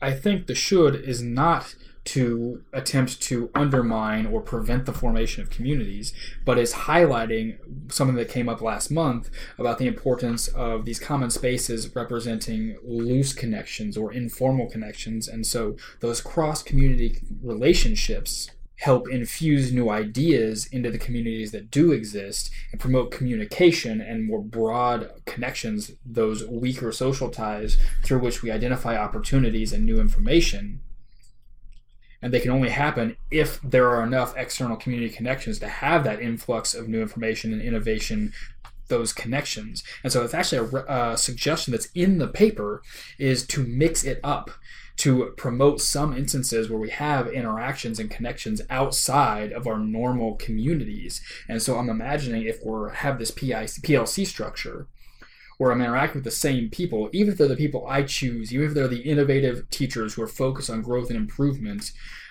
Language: English